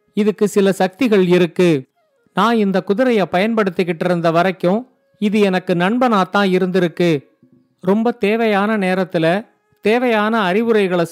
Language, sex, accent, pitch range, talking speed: Tamil, male, native, 185-225 Hz, 110 wpm